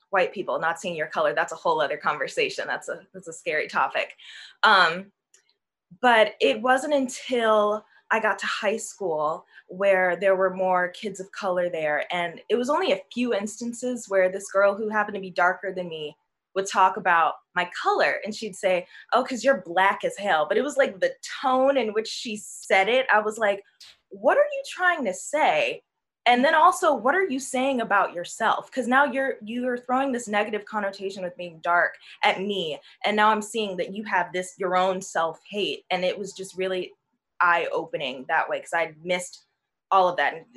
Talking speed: 205 wpm